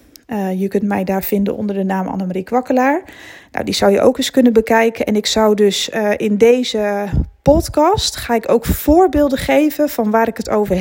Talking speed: 205 wpm